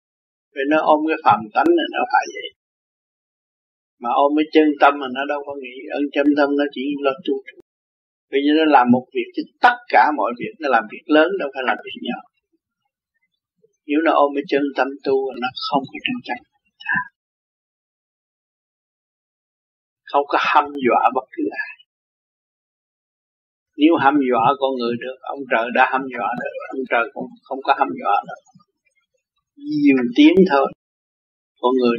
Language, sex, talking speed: Vietnamese, male, 170 wpm